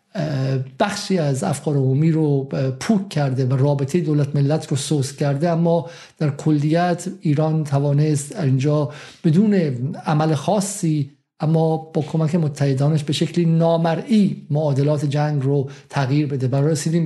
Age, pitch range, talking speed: 50-69, 150-195 Hz, 130 wpm